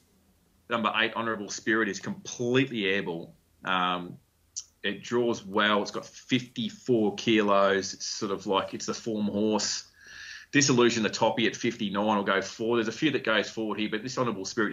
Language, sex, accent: English, male, Australian